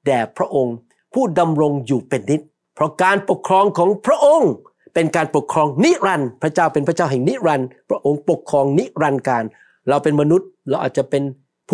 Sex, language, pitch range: male, Thai, 145-200 Hz